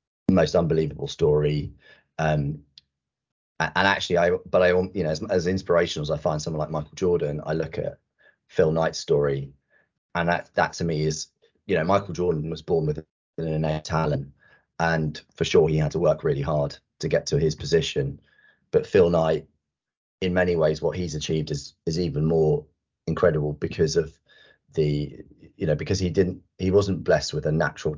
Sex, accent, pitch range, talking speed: male, British, 75-90 Hz, 180 wpm